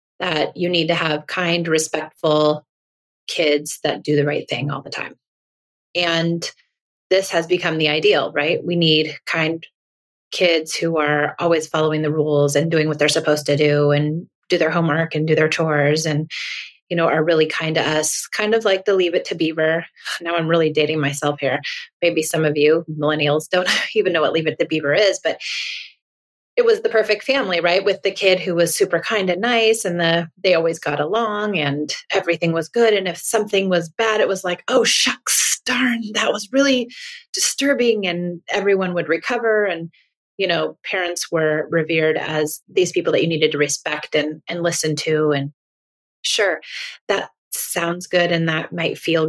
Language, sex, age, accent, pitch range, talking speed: English, female, 30-49, American, 155-190 Hz, 190 wpm